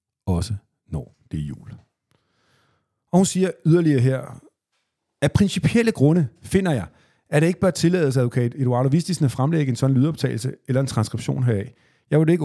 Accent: native